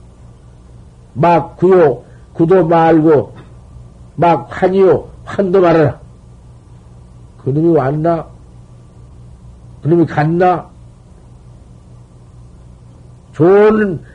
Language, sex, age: Korean, male, 50-69